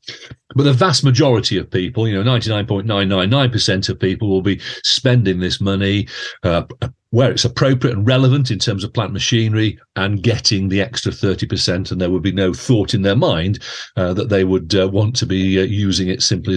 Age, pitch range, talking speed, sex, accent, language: 40-59, 100-125 Hz, 215 wpm, male, British, English